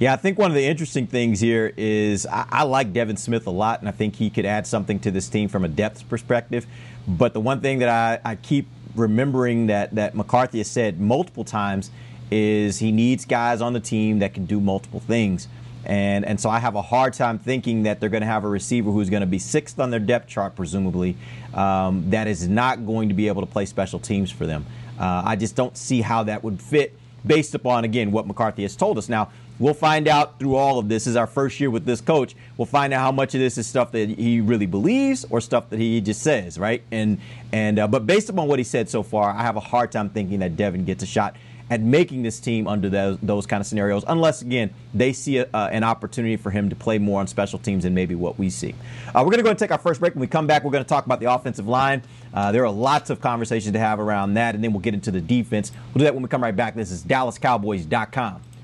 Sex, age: male, 30-49